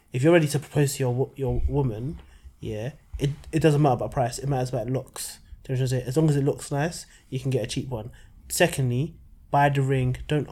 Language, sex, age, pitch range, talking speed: English, male, 20-39, 125-150 Hz, 210 wpm